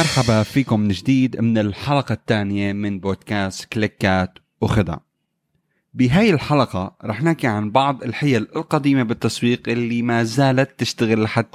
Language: Arabic